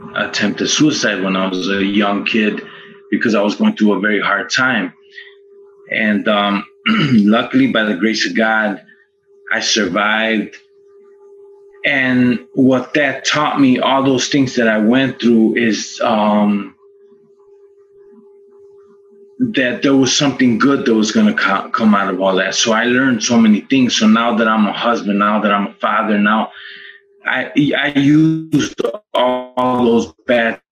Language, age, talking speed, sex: English, 20-39, 155 wpm, male